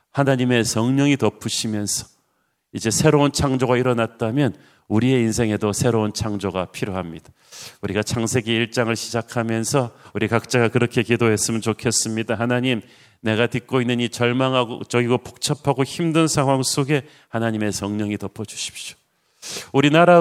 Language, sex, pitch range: Korean, male, 115-140 Hz